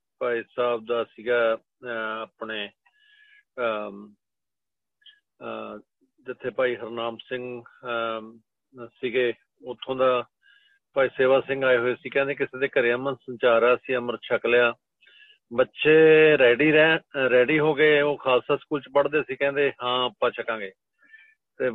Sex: male